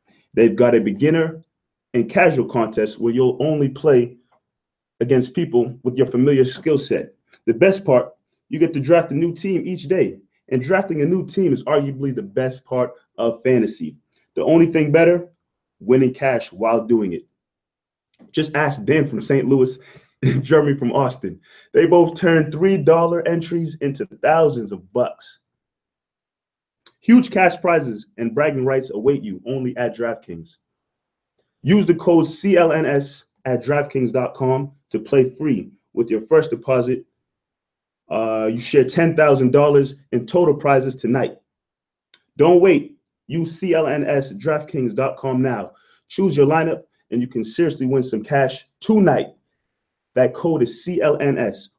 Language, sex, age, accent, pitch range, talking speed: English, male, 30-49, American, 125-165 Hz, 145 wpm